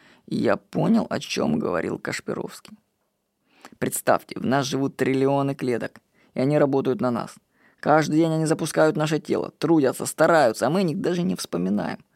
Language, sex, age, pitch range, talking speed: Russian, female, 20-39, 135-180 Hz, 155 wpm